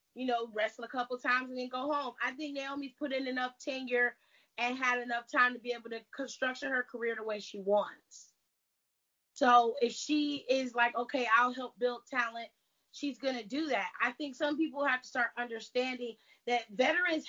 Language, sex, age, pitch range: English, female, 30-49, 235-280 Hz